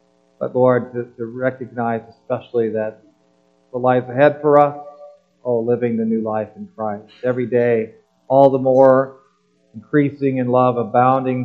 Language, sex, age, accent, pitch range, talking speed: English, male, 40-59, American, 105-125 Hz, 145 wpm